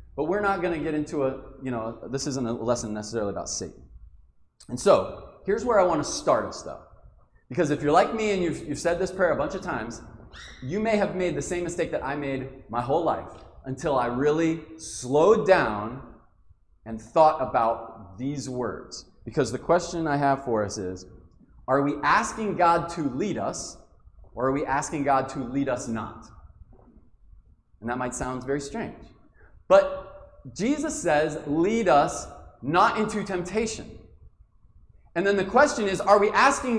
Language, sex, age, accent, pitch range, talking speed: English, male, 30-49, American, 120-195 Hz, 180 wpm